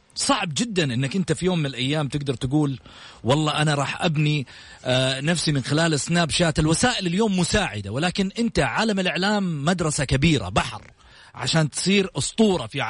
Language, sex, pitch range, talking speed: English, male, 125-180 Hz, 155 wpm